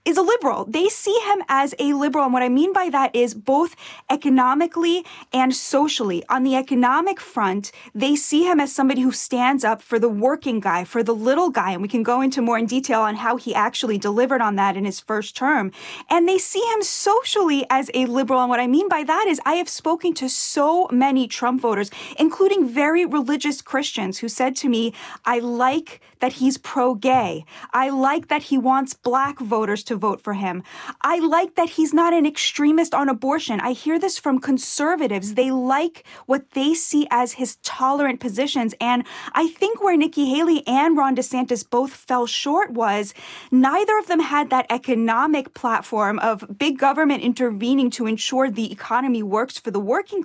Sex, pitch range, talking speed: female, 240-320 Hz, 190 wpm